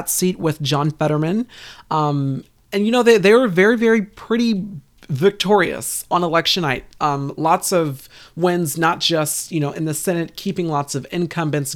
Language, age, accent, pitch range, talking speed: English, 30-49, American, 155-205 Hz, 170 wpm